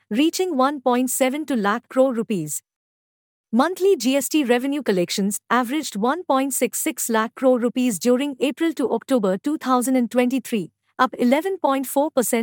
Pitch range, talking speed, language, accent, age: 215-275 Hz, 95 wpm, English, Indian, 50-69